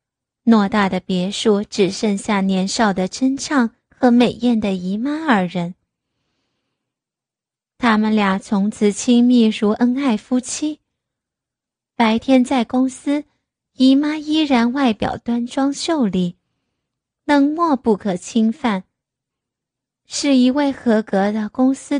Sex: female